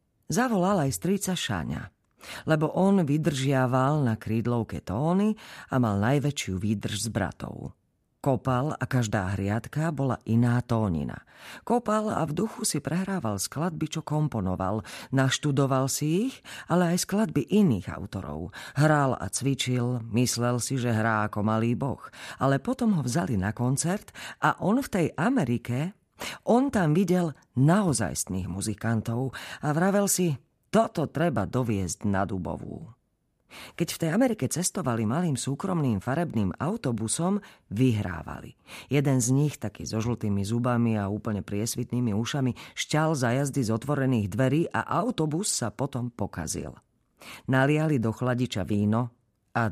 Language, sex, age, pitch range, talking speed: Slovak, female, 40-59, 110-160 Hz, 135 wpm